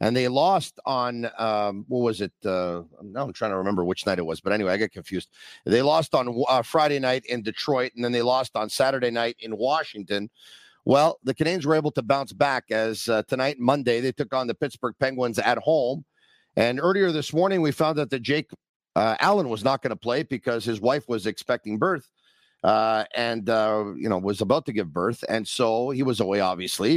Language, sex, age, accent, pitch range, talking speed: English, male, 50-69, American, 110-140 Hz, 220 wpm